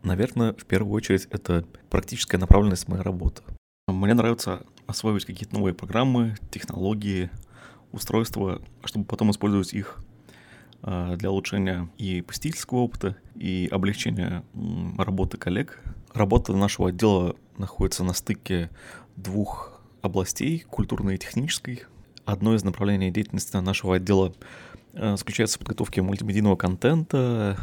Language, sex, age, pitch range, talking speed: Russian, male, 20-39, 95-115 Hz, 115 wpm